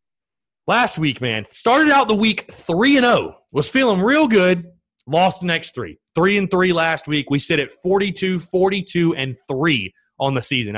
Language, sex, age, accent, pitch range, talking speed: English, male, 30-49, American, 130-180 Hz, 165 wpm